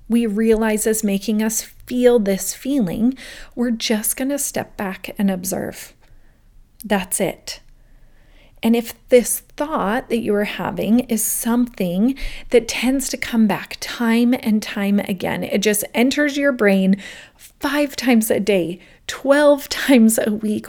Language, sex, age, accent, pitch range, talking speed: English, female, 30-49, American, 200-260 Hz, 145 wpm